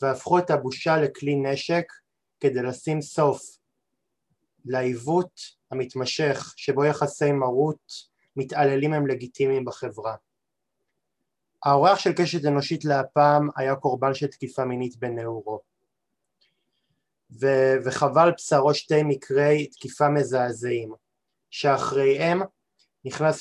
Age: 20-39